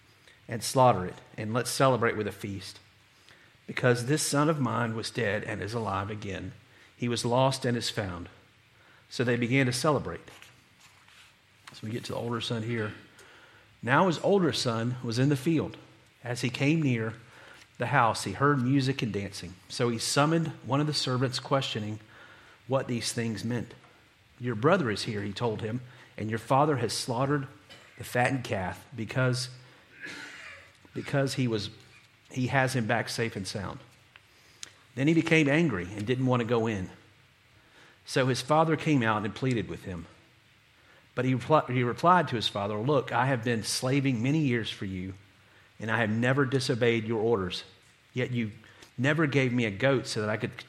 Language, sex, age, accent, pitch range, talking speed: English, male, 40-59, American, 110-130 Hz, 180 wpm